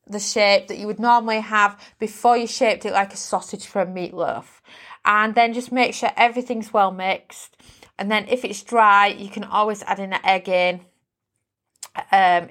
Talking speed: 185 wpm